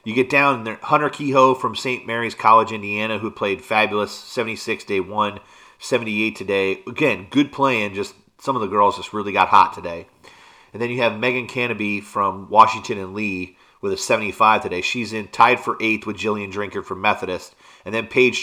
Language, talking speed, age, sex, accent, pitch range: English, 190 wpm, 30-49, male, American, 105-120 Hz